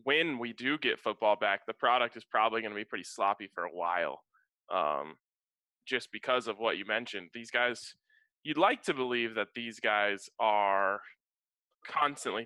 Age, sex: 20-39, male